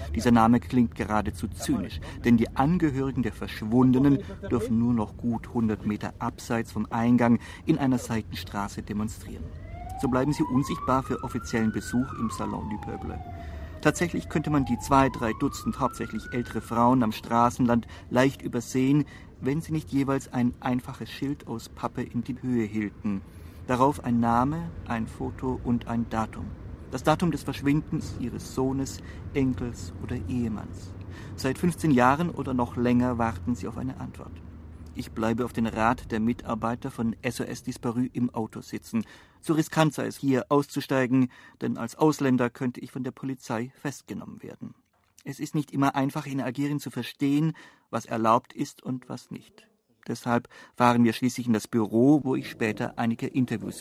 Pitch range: 110-135 Hz